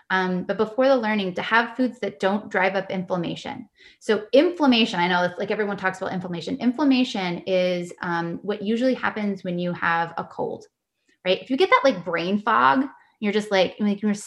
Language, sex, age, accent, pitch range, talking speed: English, female, 20-39, American, 185-240 Hz, 200 wpm